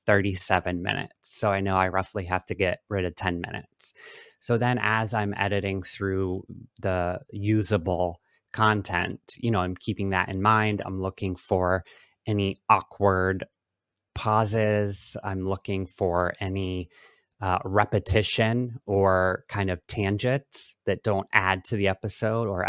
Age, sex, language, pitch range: 30-49, male, English, 95-105 Hz